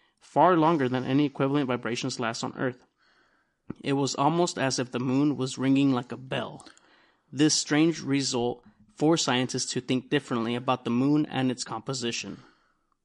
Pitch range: 125-145 Hz